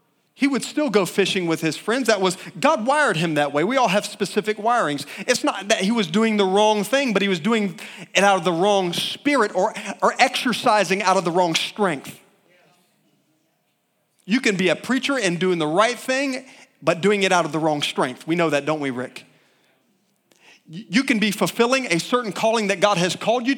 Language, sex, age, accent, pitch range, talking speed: English, male, 40-59, American, 185-240 Hz, 210 wpm